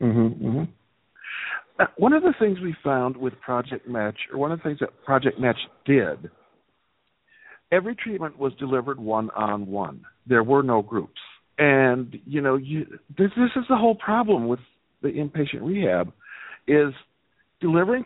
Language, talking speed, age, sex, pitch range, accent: English, 155 wpm, 50-69, male, 110-155 Hz, American